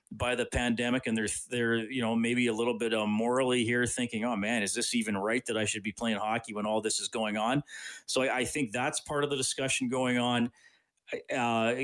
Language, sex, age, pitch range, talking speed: English, male, 30-49, 110-125 Hz, 235 wpm